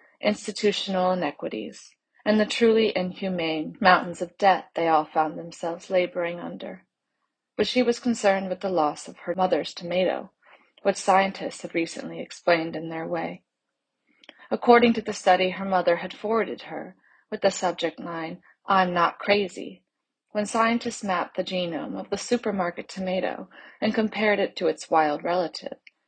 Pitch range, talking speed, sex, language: 175-210 Hz, 150 wpm, female, English